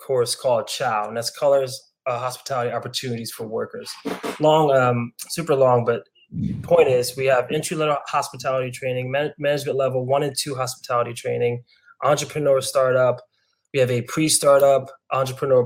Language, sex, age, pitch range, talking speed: English, male, 20-39, 120-140 Hz, 145 wpm